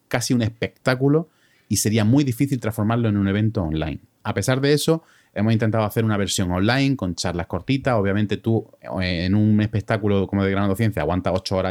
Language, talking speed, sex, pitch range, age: Spanish, 190 wpm, male, 95-115 Hz, 30-49